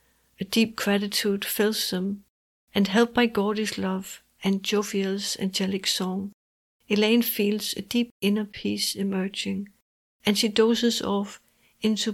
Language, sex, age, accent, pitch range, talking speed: English, female, 60-79, Danish, 200-225 Hz, 130 wpm